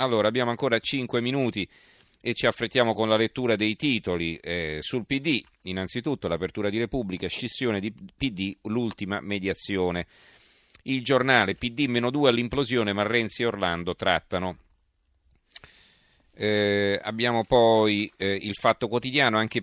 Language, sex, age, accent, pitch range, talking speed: Italian, male, 40-59, native, 85-110 Hz, 125 wpm